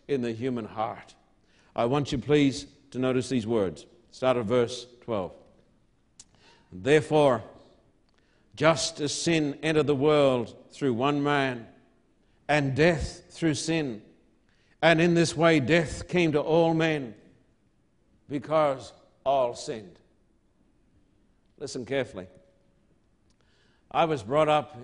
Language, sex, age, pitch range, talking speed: English, male, 60-79, 130-155 Hz, 115 wpm